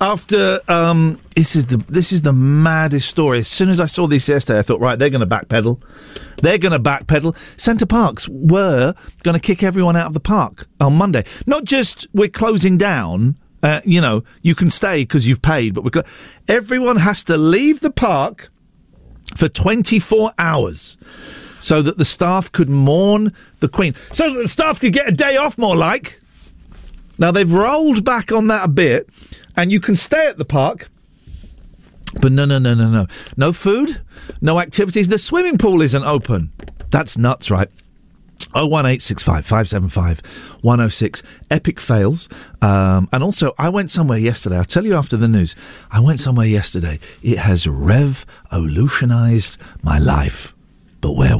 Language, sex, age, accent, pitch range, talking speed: English, male, 50-69, British, 115-190 Hz, 175 wpm